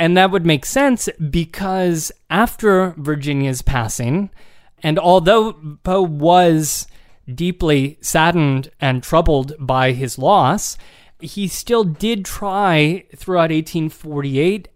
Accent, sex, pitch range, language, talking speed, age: American, male, 150-190 Hz, English, 105 wpm, 30-49